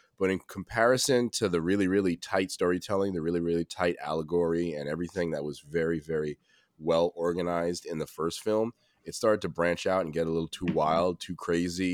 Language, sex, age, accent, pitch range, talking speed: English, male, 20-39, American, 80-100 Hz, 195 wpm